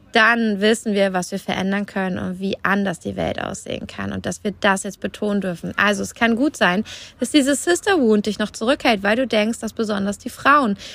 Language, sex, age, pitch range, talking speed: German, female, 20-39, 195-240 Hz, 215 wpm